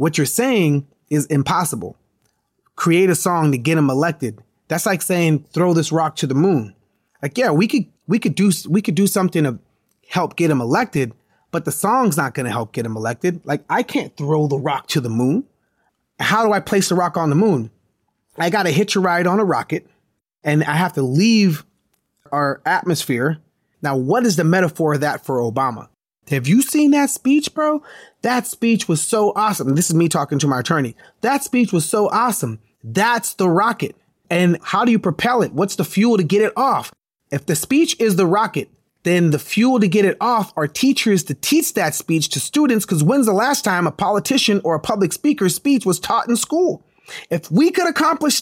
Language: English